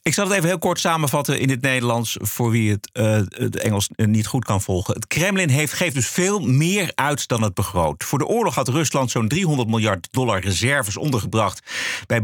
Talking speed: 205 wpm